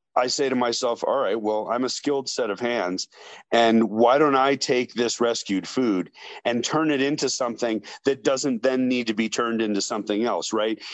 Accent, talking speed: American, 205 wpm